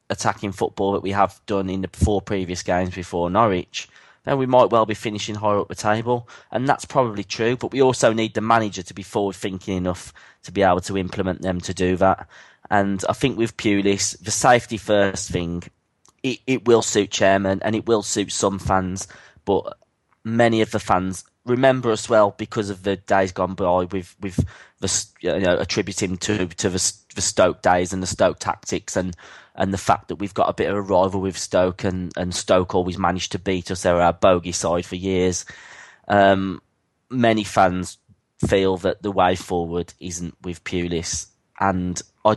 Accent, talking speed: British, 195 wpm